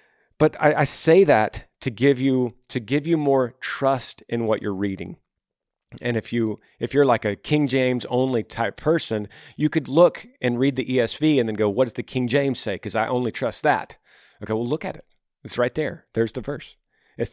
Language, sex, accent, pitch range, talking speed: English, male, American, 110-135 Hz, 215 wpm